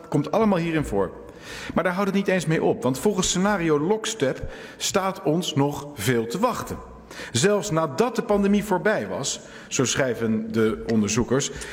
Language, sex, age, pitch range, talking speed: Hungarian, male, 50-69, 125-190 Hz, 170 wpm